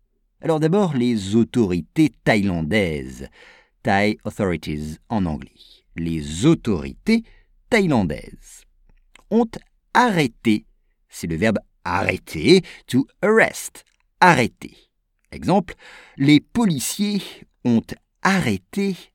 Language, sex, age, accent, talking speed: English, male, 50-69, French, 80 wpm